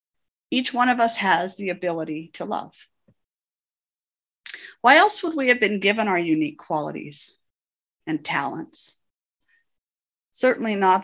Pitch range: 175-275 Hz